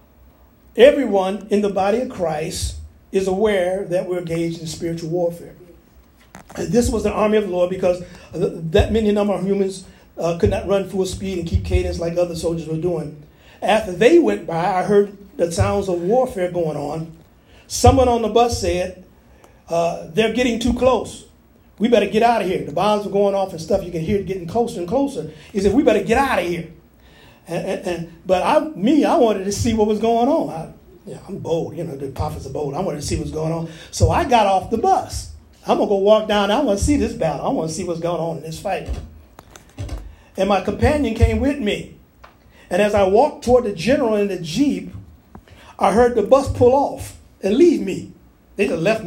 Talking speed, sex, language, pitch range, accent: 220 wpm, male, English, 170-215 Hz, American